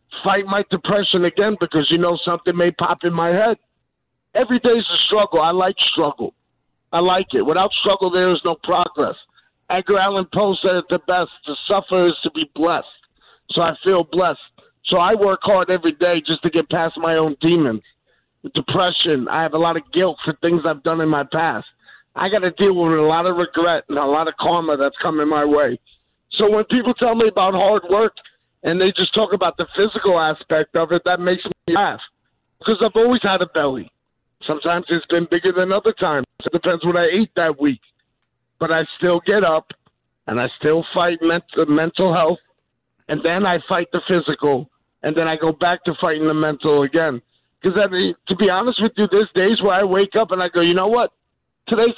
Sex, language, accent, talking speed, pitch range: male, English, American, 210 wpm, 160-195 Hz